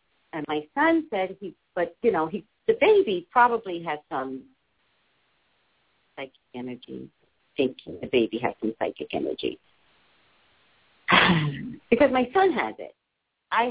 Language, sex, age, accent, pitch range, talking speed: English, female, 50-69, American, 140-230 Hz, 125 wpm